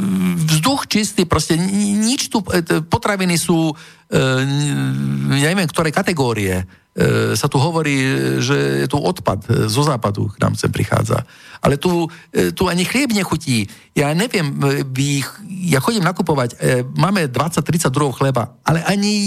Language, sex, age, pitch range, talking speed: Slovak, male, 50-69, 125-170 Hz, 130 wpm